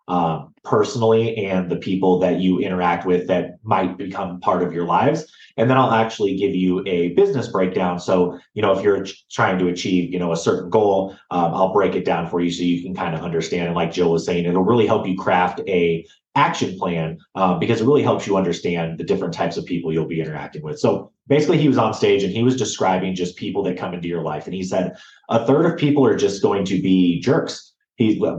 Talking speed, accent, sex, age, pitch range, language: 240 wpm, American, male, 30-49, 90-110 Hz, English